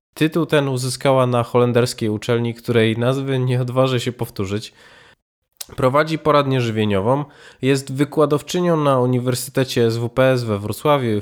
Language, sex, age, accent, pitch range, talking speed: Polish, male, 20-39, native, 115-145 Hz, 125 wpm